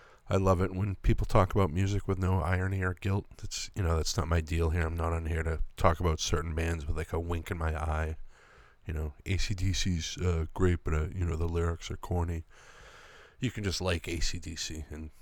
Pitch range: 80-95 Hz